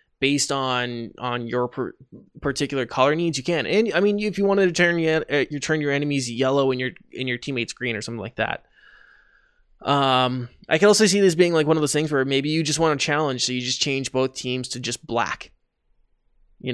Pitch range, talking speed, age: 125-160 Hz, 220 wpm, 20-39